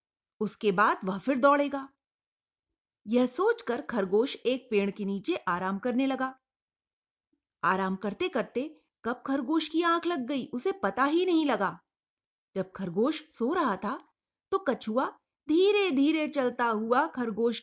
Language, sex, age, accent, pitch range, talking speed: Hindi, female, 30-49, native, 215-300 Hz, 140 wpm